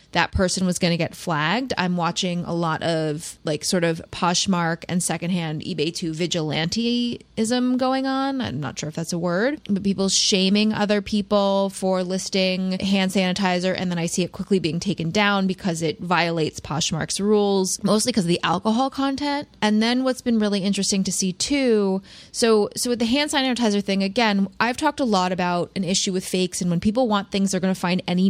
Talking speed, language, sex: 200 wpm, English, female